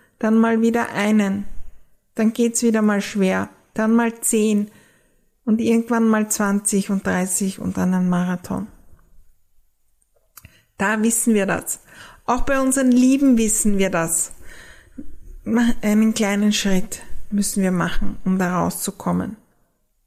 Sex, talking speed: female, 125 wpm